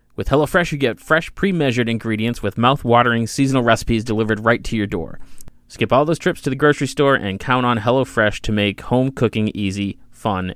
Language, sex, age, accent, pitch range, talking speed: English, male, 30-49, American, 110-130 Hz, 195 wpm